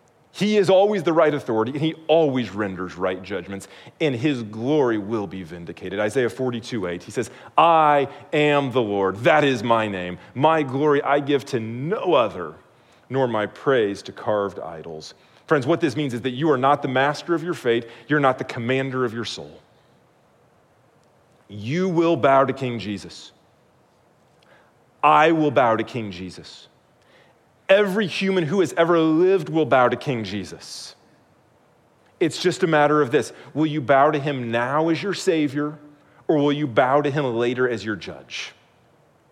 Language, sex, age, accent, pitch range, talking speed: English, male, 30-49, American, 120-165 Hz, 175 wpm